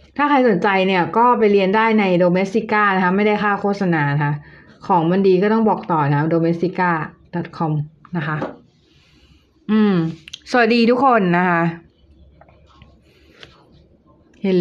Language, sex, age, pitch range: Thai, female, 20-39, 165-220 Hz